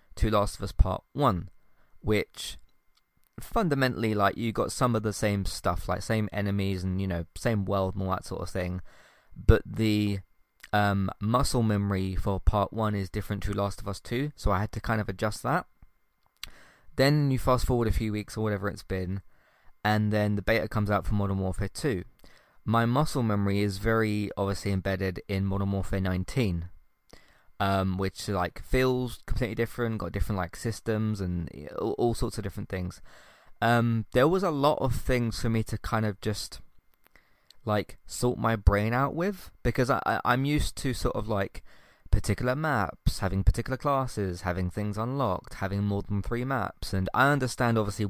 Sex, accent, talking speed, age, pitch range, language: male, British, 180 wpm, 20-39, 95-115 Hz, English